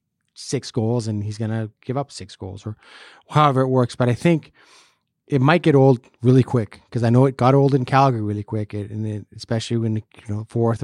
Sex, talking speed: male, 235 wpm